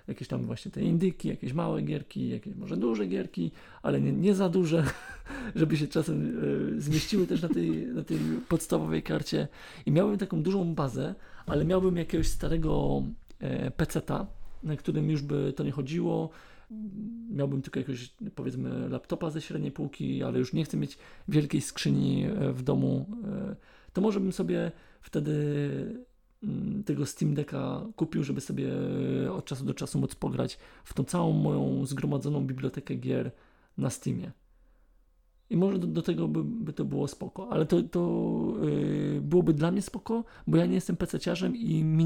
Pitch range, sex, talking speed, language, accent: 135-185 Hz, male, 160 wpm, Polish, native